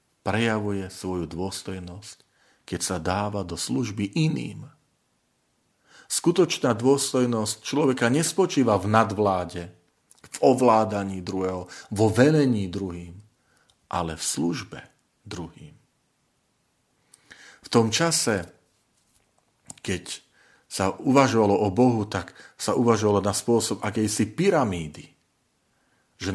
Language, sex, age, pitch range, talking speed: Slovak, male, 40-59, 95-125 Hz, 95 wpm